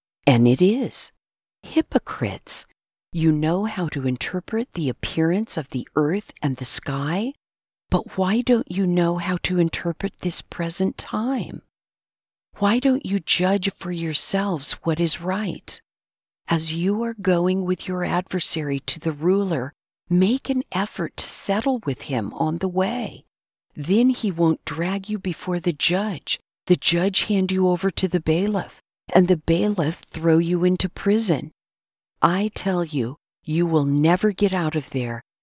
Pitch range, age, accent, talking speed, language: 140-190 Hz, 50-69, American, 150 wpm, English